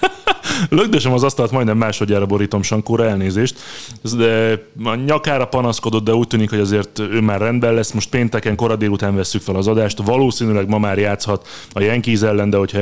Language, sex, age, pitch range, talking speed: Hungarian, male, 30-49, 105-130 Hz, 180 wpm